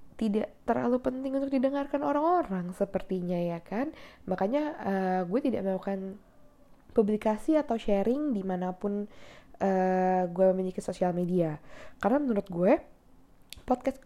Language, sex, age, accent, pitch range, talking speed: Indonesian, female, 10-29, native, 185-255 Hz, 115 wpm